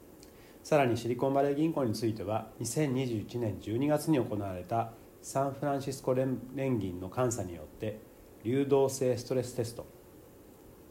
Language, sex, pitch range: Japanese, male, 110-135 Hz